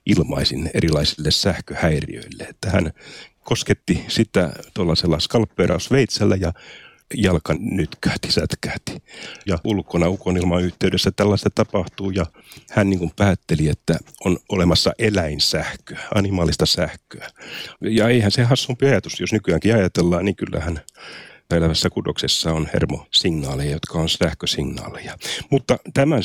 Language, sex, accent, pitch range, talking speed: Finnish, male, native, 85-105 Hz, 105 wpm